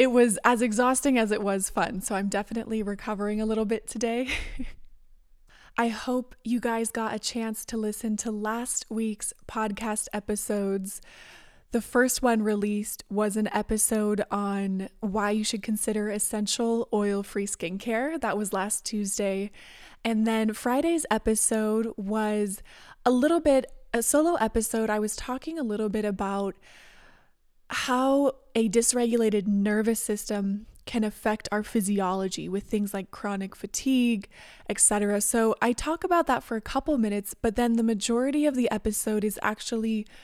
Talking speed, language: 150 wpm, English